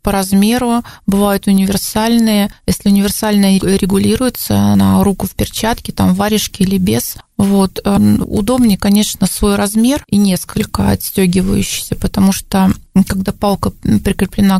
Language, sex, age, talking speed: Russian, female, 20-39, 115 wpm